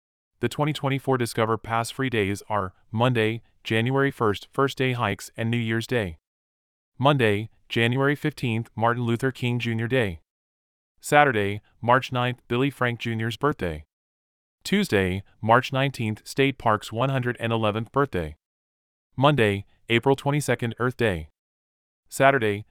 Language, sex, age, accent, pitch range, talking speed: English, male, 30-49, American, 95-130 Hz, 115 wpm